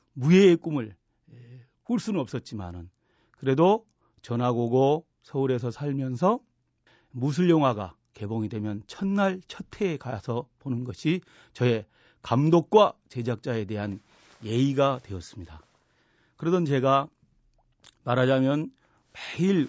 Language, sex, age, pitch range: Korean, male, 40-59, 120-170 Hz